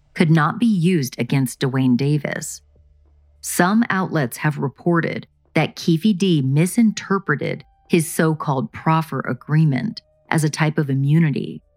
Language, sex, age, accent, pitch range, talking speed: English, female, 40-59, American, 130-170 Hz, 120 wpm